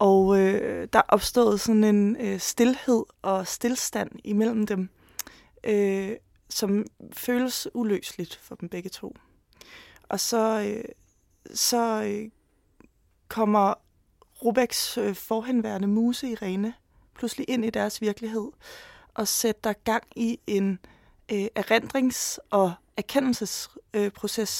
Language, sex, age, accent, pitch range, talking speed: Danish, female, 20-39, native, 195-230 Hz, 110 wpm